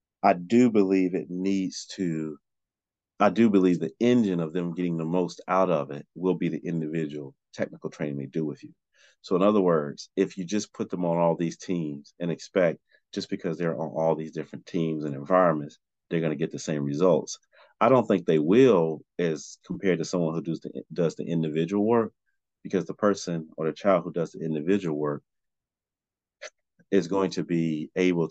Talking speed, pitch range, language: 195 wpm, 75-95 Hz, English